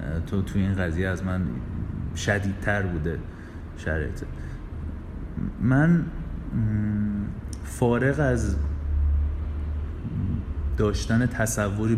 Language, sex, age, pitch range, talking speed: Persian, male, 30-49, 95-130 Hz, 70 wpm